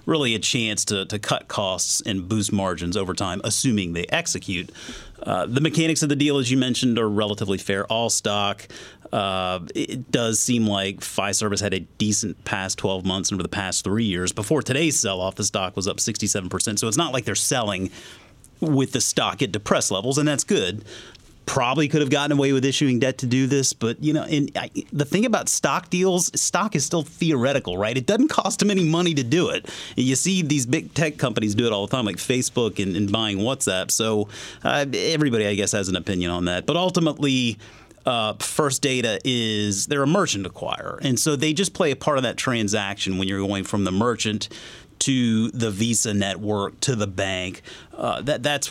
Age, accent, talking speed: 30-49, American, 205 wpm